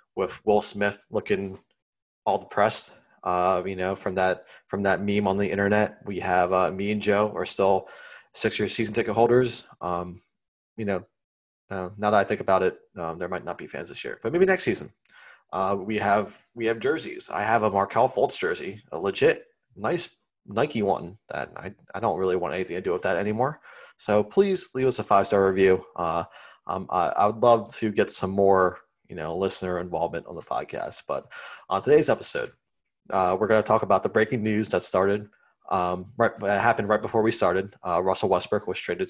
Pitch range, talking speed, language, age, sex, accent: 95-120 Hz, 205 wpm, English, 20-39, male, American